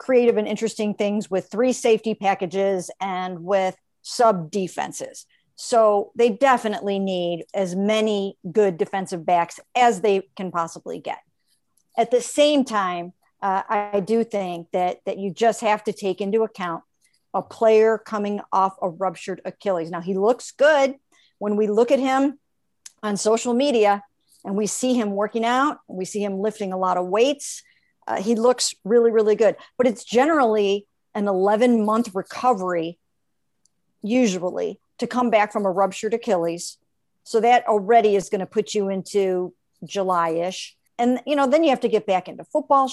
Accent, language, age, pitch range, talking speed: American, English, 50-69, 190-235 Hz, 165 wpm